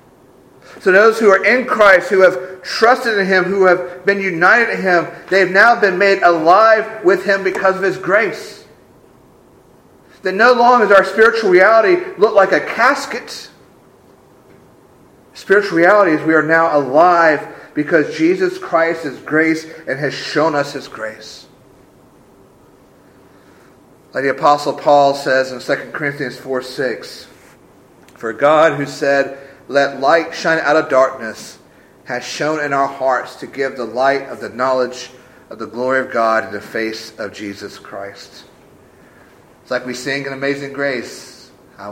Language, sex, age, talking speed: English, male, 40-59, 155 wpm